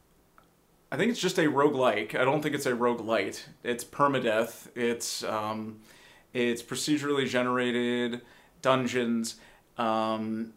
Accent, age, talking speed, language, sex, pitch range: American, 30-49, 120 wpm, English, male, 115-140 Hz